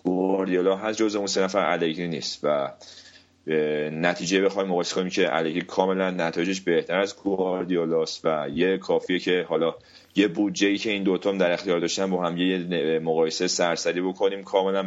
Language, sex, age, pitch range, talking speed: Persian, male, 30-49, 85-95 Hz, 155 wpm